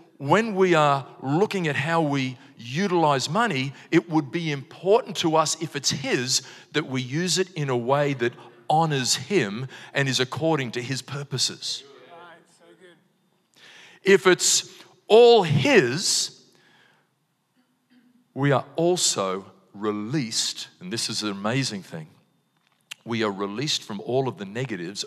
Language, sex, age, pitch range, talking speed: English, male, 40-59, 120-170 Hz, 135 wpm